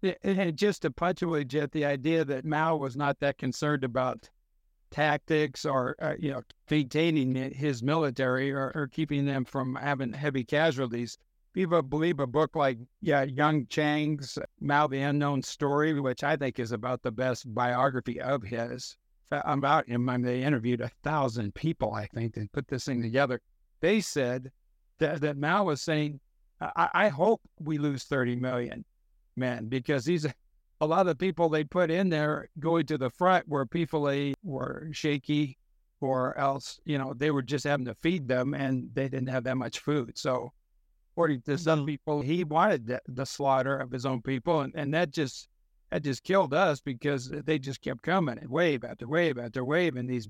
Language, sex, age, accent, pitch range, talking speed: English, male, 60-79, American, 130-155 Hz, 185 wpm